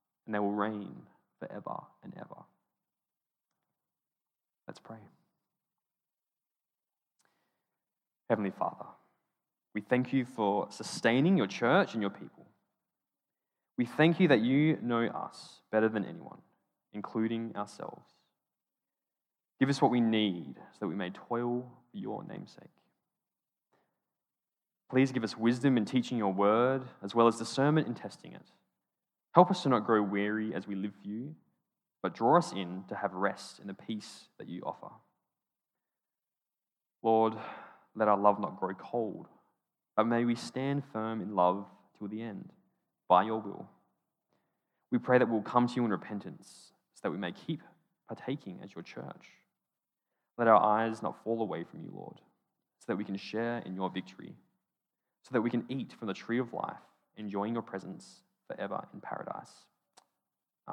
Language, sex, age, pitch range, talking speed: English, male, 20-39, 105-125 Hz, 155 wpm